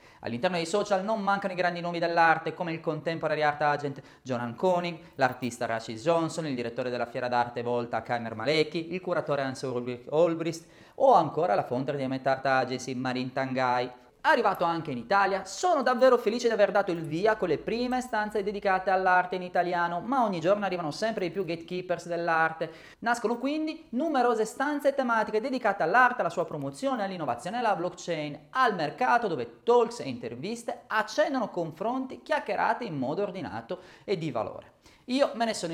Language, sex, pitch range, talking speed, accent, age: Italian, male, 150-225 Hz, 175 wpm, native, 30-49